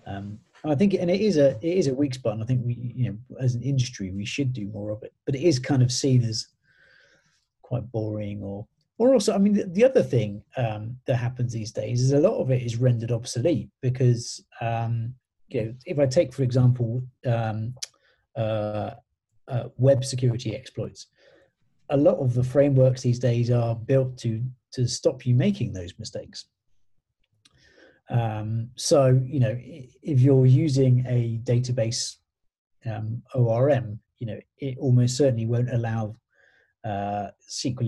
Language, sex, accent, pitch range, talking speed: English, male, British, 115-130 Hz, 175 wpm